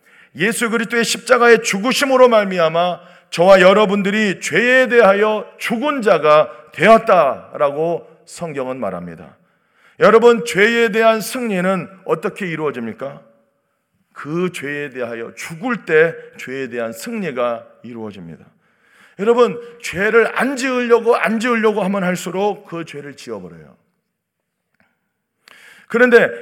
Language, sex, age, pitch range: Korean, male, 40-59, 185-240 Hz